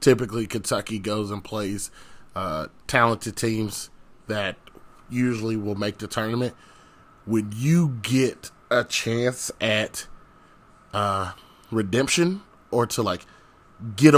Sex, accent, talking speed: male, American, 110 wpm